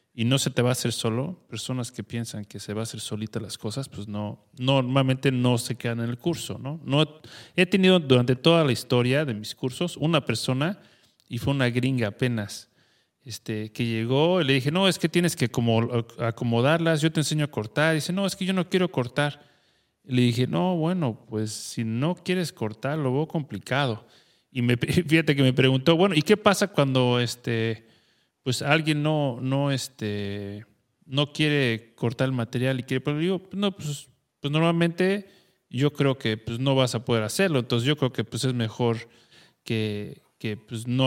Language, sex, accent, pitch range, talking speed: English, male, Mexican, 120-160 Hz, 200 wpm